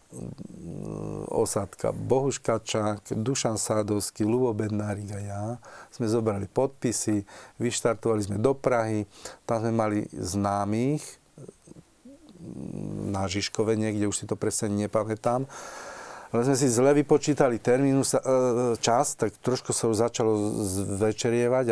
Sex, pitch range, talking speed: male, 105-125 Hz, 110 wpm